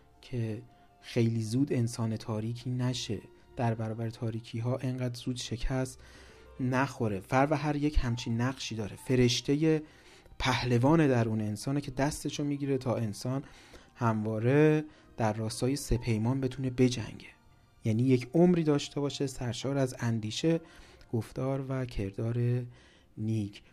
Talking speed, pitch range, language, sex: 120 wpm, 115-140 Hz, Persian, male